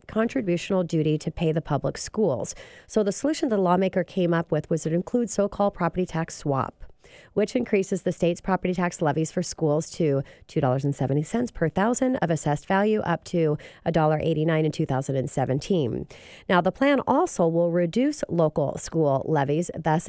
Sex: female